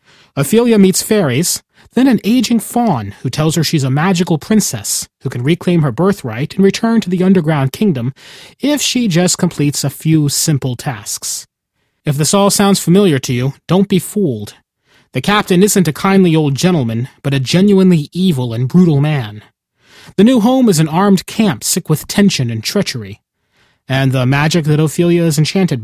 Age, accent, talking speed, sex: 30-49, American, 175 wpm, male